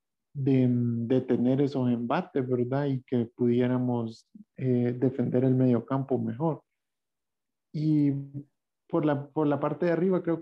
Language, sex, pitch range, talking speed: Spanish, male, 130-150 Hz, 130 wpm